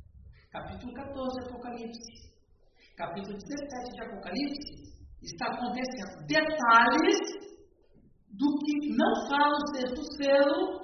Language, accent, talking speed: Portuguese, Brazilian, 100 wpm